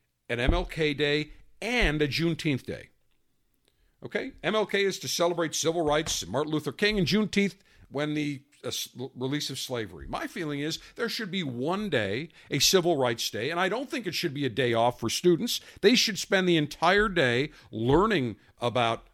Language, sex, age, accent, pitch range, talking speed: English, male, 50-69, American, 120-180 Hz, 180 wpm